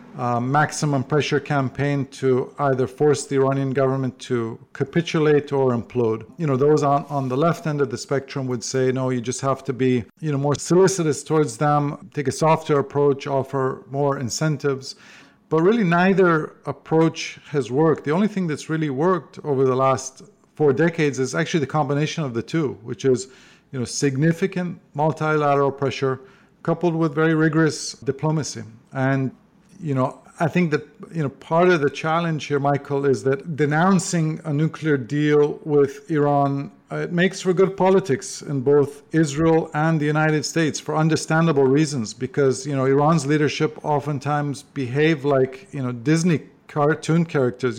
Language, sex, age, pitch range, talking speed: English, male, 50-69, 135-160 Hz, 165 wpm